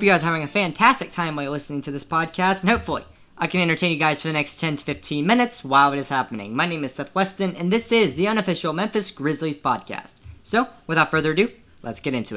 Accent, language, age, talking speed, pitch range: American, English, 10-29, 250 wpm, 135-185 Hz